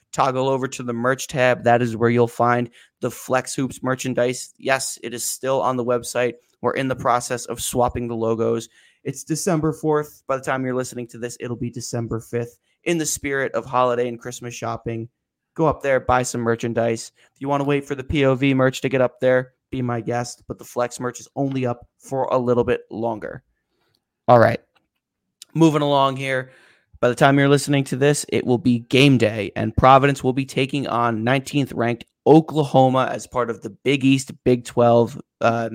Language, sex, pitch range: English, male, 115-135 Hz